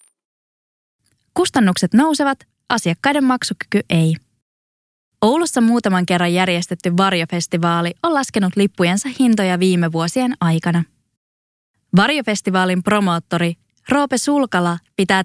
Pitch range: 175-245 Hz